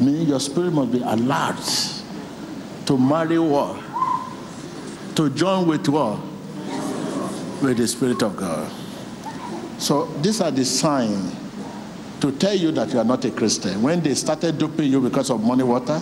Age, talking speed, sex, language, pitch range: 60-79, 155 wpm, male, English, 175-245 Hz